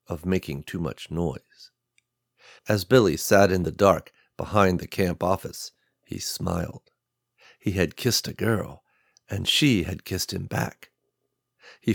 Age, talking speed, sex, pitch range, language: 50-69, 145 wpm, male, 90-115 Hz, English